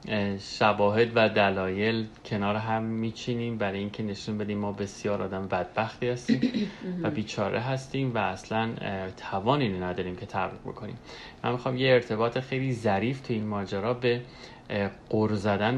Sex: male